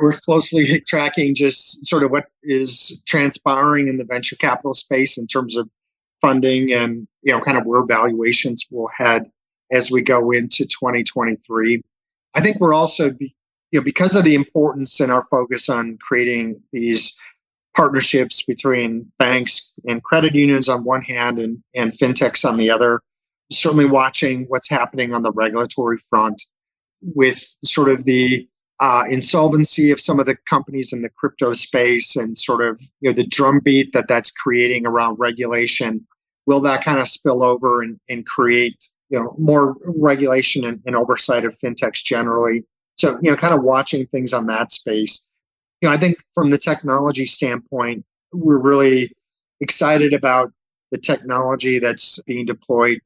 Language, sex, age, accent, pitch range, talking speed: English, male, 40-59, American, 120-140 Hz, 165 wpm